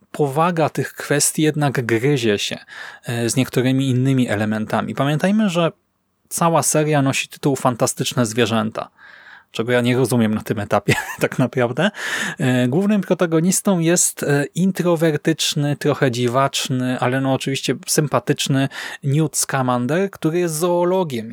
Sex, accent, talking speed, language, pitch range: male, native, 120 wpm, Polish, 125-155 Hz